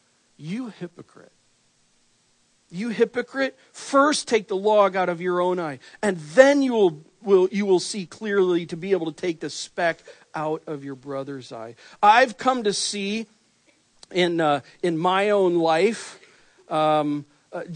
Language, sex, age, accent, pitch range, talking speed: English, male, 50-69, American, 155-225 Hz, 155 wpm